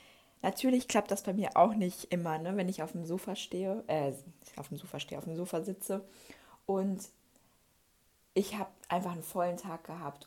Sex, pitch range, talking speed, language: female, 170-205 Hz, 180 wpm, German